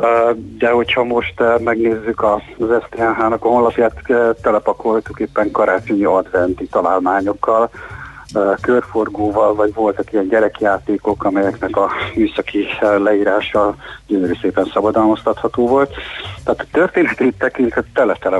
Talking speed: 100 wpm